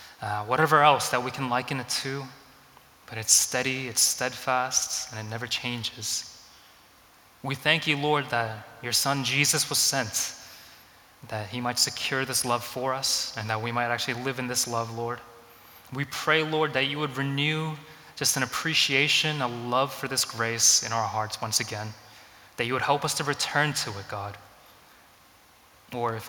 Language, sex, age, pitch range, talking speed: English, male, 20-39, 115-135 Hz, 180 wpm